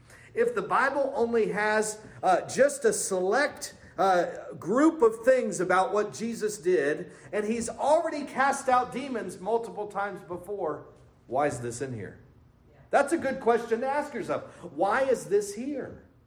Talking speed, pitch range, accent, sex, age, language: 155 wpm, 200-260 Hz, American, male, 50-69, English